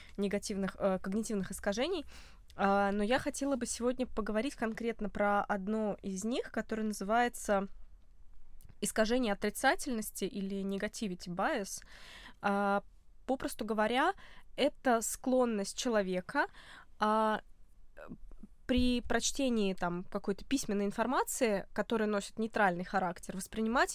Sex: female